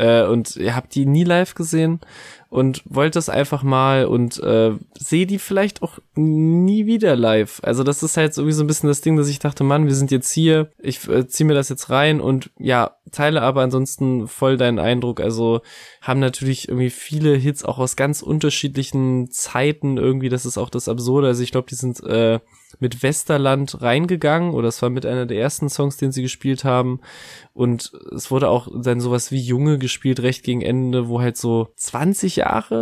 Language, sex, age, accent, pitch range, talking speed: German, male, 20-39, German, 125-150 Hz, 200 wpm